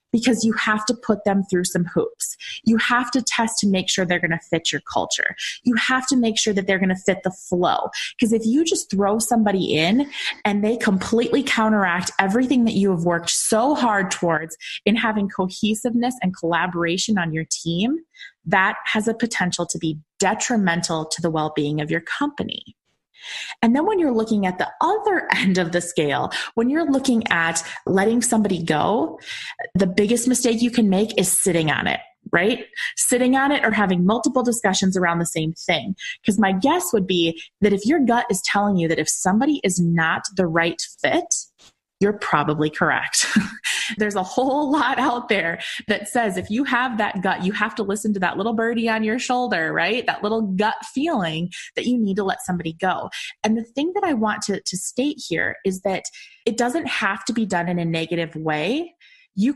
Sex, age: female, 20-39